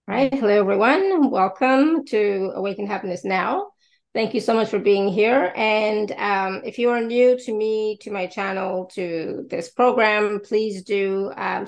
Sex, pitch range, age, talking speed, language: female, 195-235 Hz, 30-49, 165 wpm, English